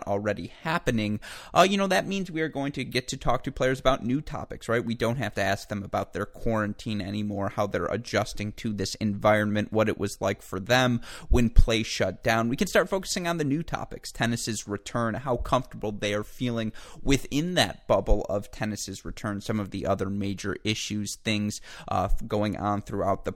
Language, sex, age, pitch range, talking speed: English, male, 30-49, 100-120 Hz, 205 wpm